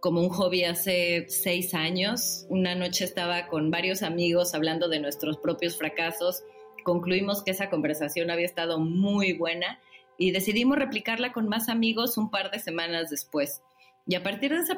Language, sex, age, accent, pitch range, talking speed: Spanish, female, 30-49, Mexican, 170-215 Hz, 165 wpm